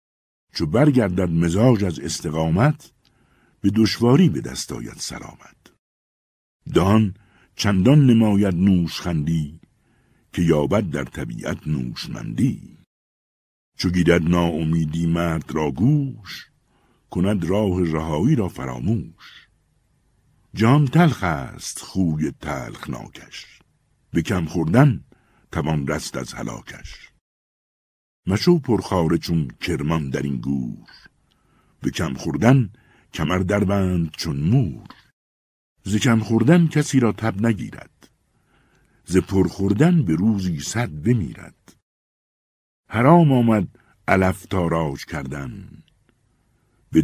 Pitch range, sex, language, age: 80-115 Hz, male, Persian, 60-79